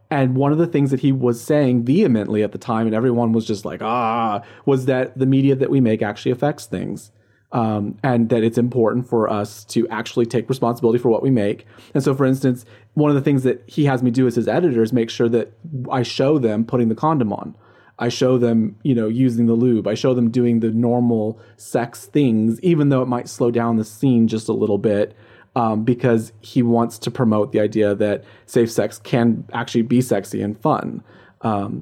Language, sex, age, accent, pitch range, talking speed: English, male, 30-49, American, 110-130 Hz, 220 wpm